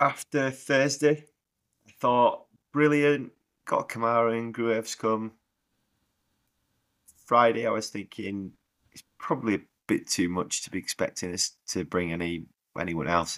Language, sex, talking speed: English, male, 130 wpm